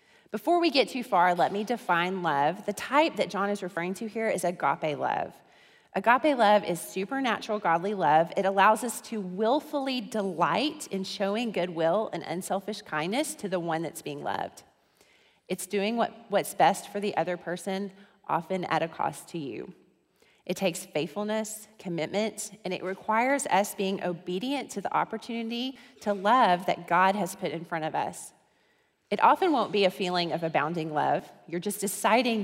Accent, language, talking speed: American, English, 170 wpm